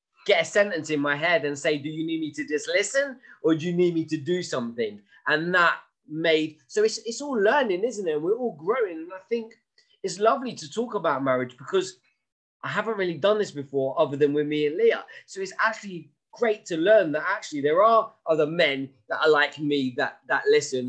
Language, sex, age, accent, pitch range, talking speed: English, male, 20-39, British, 145-220 Hz, 220 wpm